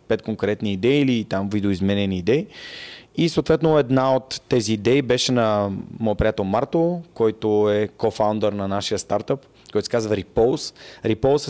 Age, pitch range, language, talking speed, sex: 30-49, 105-135 Hz, Bulgarian, 150 wpm, male